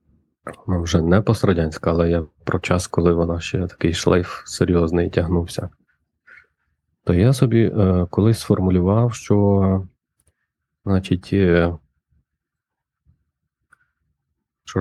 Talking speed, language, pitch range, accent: 95 wpm, Ukrainian, 85-100 Hz, native